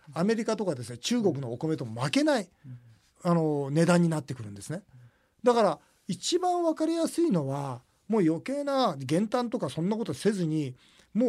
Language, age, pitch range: Japanese, 40-59, 150-240 Hz